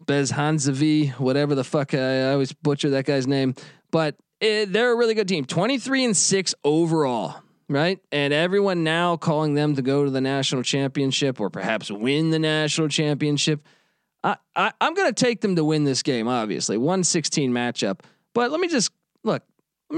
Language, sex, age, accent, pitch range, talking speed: English, male, 20-39, American, 140-195 Hz, 175 wpm